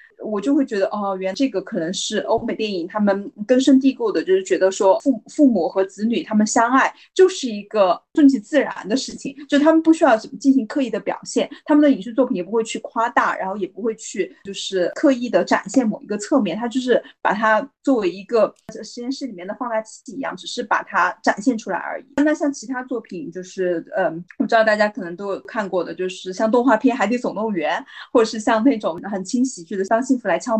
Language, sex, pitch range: Chinese, female, 205-275 Hz